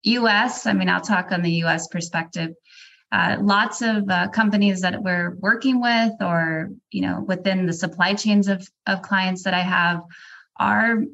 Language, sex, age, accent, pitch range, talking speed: English, female, 20-39, American, 170-205 Hz, 170 wpm